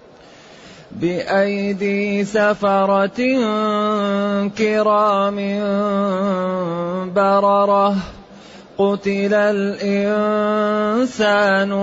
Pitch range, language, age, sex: 185-210 Hz, Arabic, 30-49, male